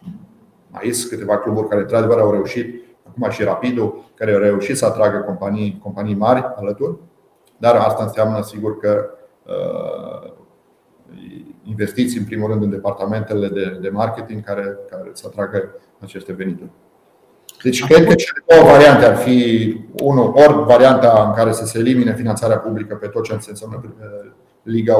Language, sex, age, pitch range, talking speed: Romanian, male, 40-59, 105-130 Hz, 145 wpm